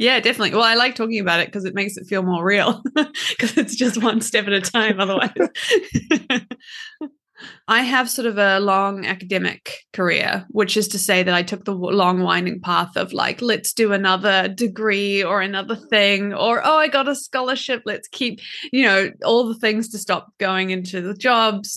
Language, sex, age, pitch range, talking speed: English, female, 20-39, 195-230 Hz, 195 wpm